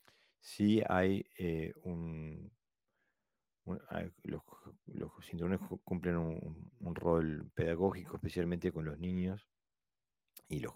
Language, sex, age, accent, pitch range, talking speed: Spanish, male, 40-59, Argentinian, 80-100 Hz, 100 wpm